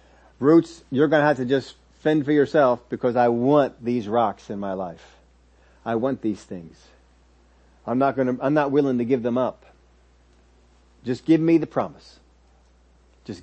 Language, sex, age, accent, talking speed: English, male, 40-59, American, 165 wpm